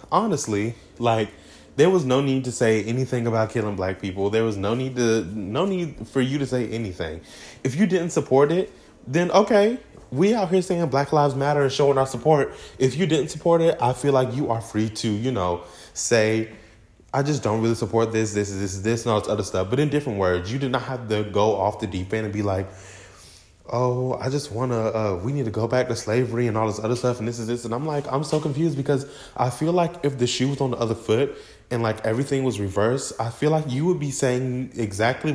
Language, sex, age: English, male, 20-39